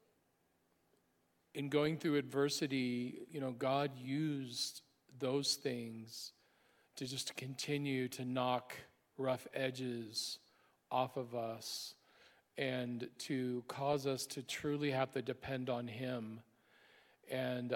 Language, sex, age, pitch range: English, male, 40-59, 125-135 Hz